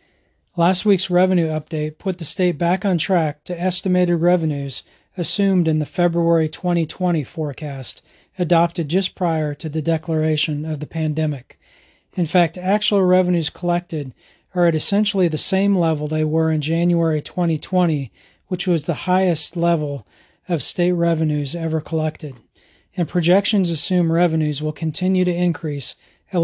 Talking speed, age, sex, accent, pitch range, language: 145 wpm, 40-59, male, American, 150-175 Hz, English